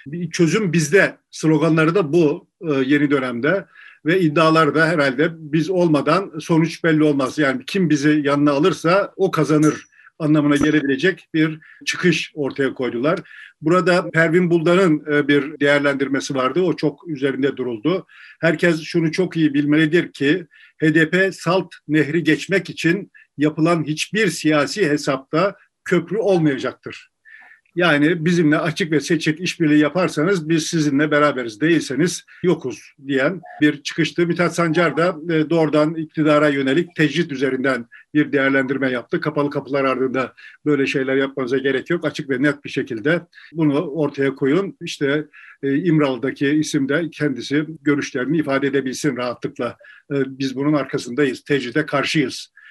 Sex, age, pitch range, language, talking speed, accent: male, 50-69, 145-165 Hz, Turkish, 130 wpm, native